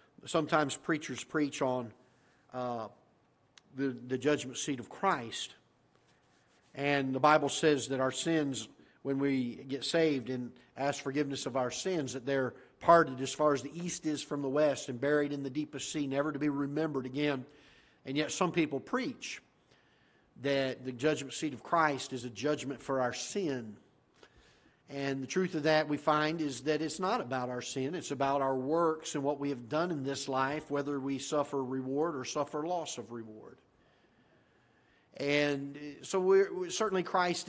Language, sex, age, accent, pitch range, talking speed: English, male, 50-69, American, 135-155 Hz, 170 wpm